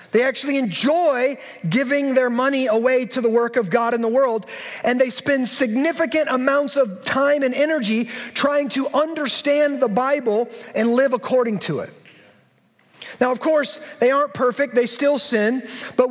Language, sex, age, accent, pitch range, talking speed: English, male, 30-49, American, 235-285 Hz, 165 wpm